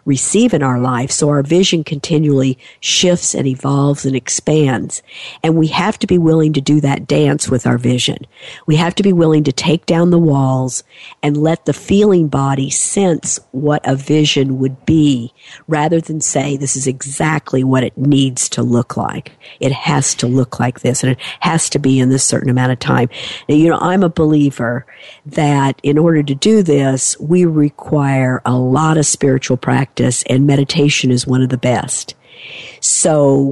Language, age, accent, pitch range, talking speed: English, 50-69, American, 130-160 Hz, 185 wpm